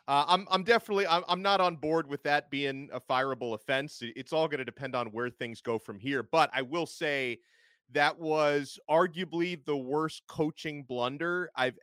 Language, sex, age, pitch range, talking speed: English, male, 30-49, 130-165 Hz, 190 wpm